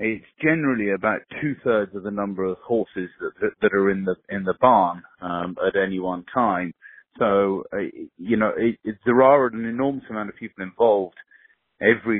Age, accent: 30-49, British